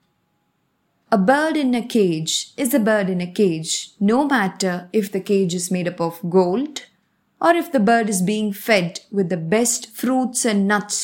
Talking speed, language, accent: 185 wpm, English, Indian